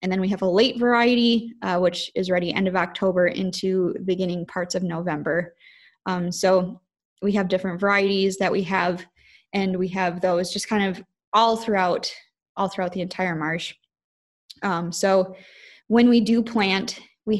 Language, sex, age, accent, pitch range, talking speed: English, female, 10-29, American, 180-200 Hz, 170 wpm